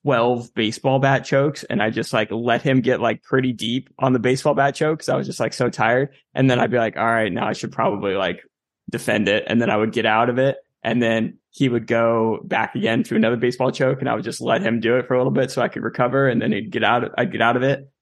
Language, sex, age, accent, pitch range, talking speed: English, male, 20-39, American, 110-135 Hz, 280 wpm